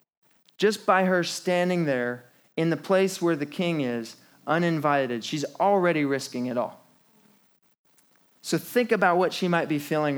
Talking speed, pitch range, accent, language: 155 wpm, 145-185 Hz, American, English